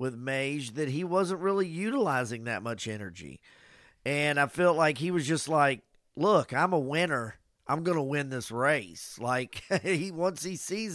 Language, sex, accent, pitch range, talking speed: English, male, American, 125-155 Hz, 180 wpm